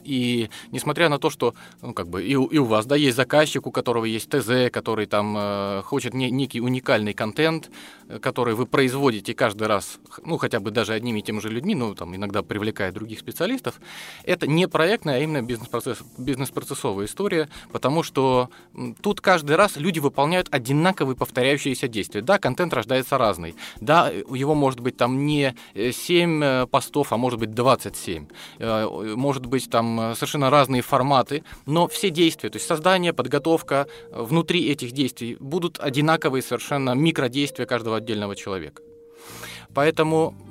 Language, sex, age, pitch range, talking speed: Russian, male, 20-39, 120-160 Hz, 160 wpm